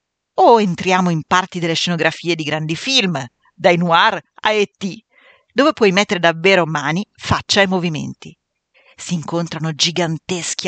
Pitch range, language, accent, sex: 170-230 Hz, Italian, native, female